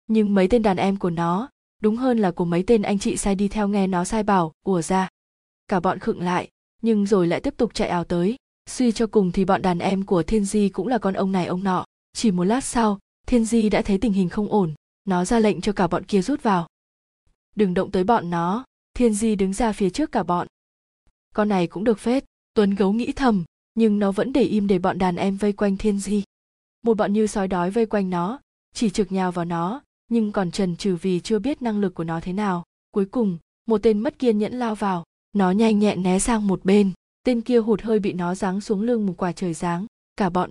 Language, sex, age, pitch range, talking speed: Vietnamese, female, 20-39, 185-225 Hz, 245 wpm